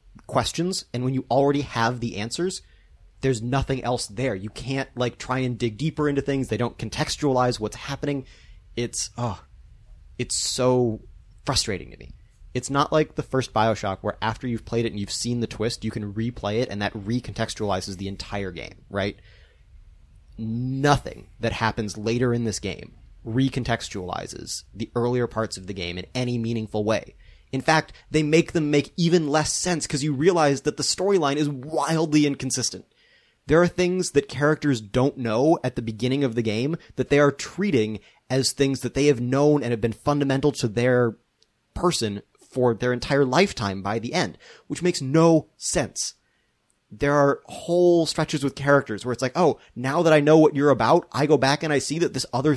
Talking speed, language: 185 wpm, English